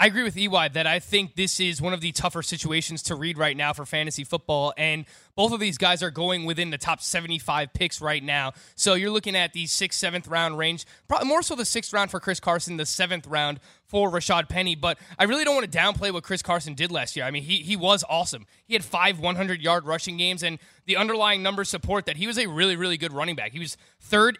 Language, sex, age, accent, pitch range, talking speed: English, male, 20-39, American, 165-195 Hz, 255 wpm